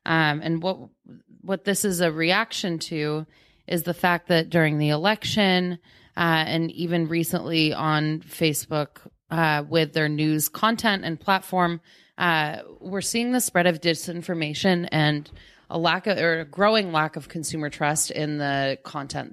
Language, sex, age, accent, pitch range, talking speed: English, female, 30-49, American, 150-170 Hz, 155 wpm